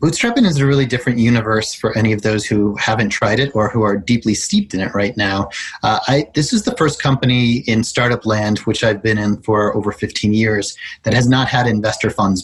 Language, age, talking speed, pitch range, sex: English, 30-49, 220 wpm, 105-125 Hz, male